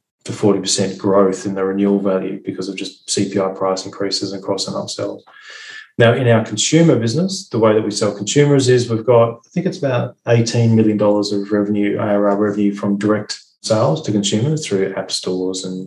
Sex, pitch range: male, 100-115 Hz